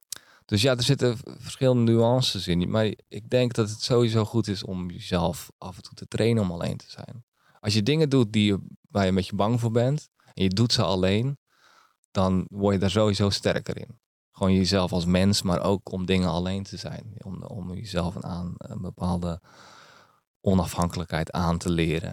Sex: male